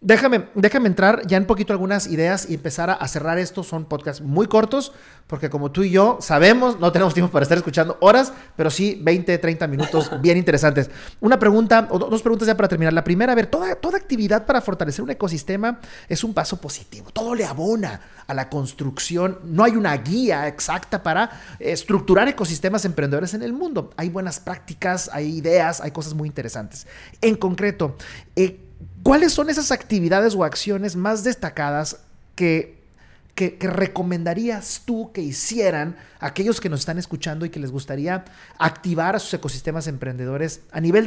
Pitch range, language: 160-220 Hz, Spanish